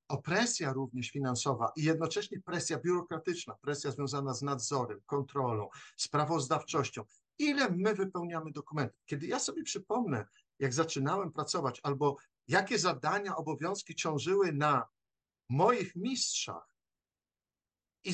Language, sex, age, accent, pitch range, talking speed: Polish, male, 50-69, native, 135-190 Hz, 110 wpm